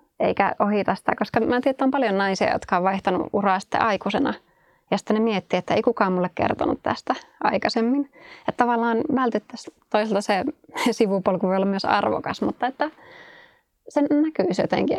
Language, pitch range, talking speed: Finnish, 190-245 Hz, 170 wpm